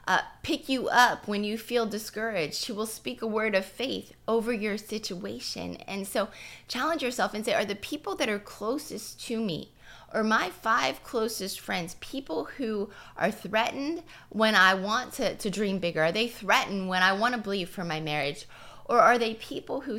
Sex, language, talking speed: female, English, 190 wpm